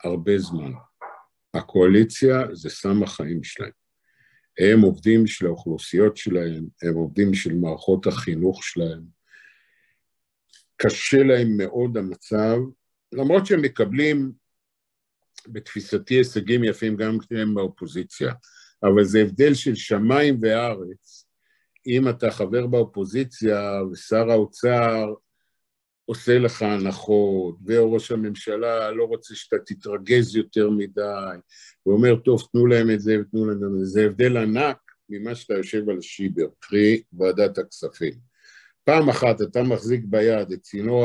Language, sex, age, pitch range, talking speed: Hebrew, male, 50-69, 105-125 Hz, 120 wpm